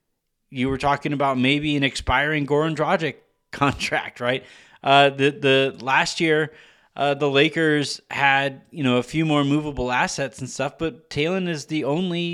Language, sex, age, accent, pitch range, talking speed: English, male, 30-49, American, 125-155 Hz, 165 wpm